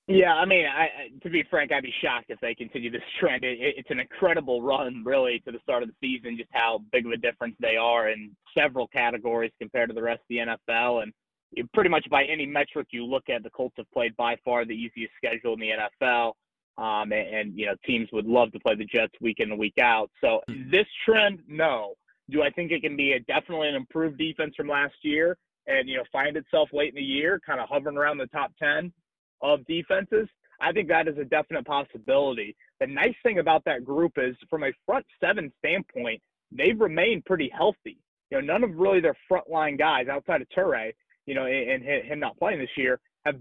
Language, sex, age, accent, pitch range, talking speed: English, male, 30-49, American, 120-165 Hz, 225 wpm